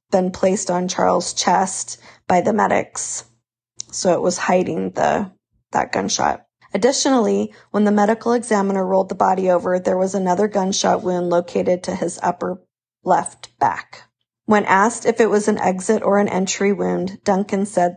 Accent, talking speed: American, 160 wpm